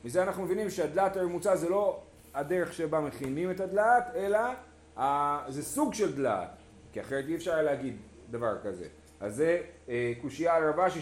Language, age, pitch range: Hebrew, 30-49, 110-170 Hz